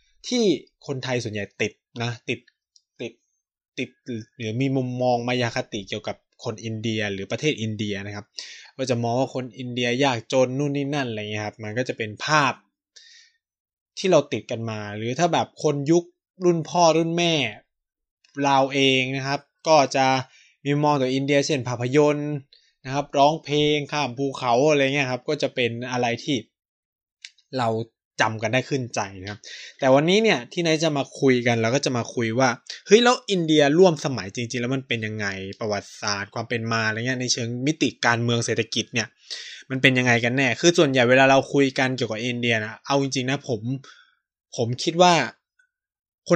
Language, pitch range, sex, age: Thai, 115-150 Hz, male, 20-39